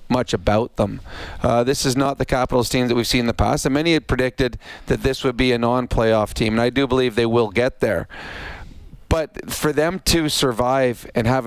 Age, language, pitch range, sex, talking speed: 40-59, English, 115-135 Hz, male, 220 wpm